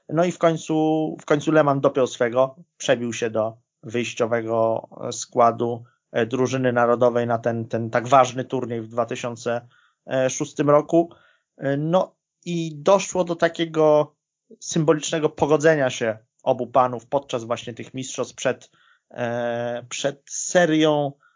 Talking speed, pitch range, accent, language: 120 wpm, 120-145 Hz, native, Polish